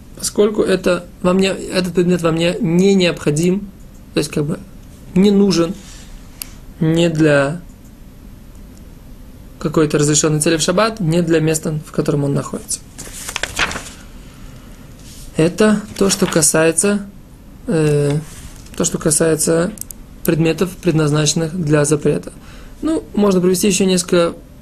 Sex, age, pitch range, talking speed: male, 20-39, 150-185 Hz, 115 wpm